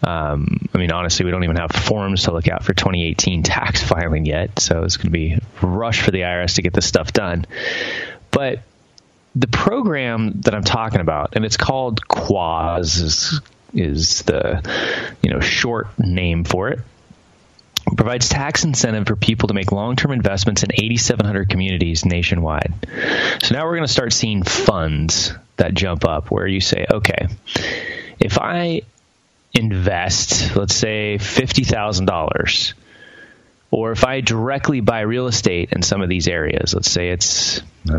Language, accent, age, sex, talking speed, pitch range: English, American, 20-39, male, 160 wpm, 90-115 Hz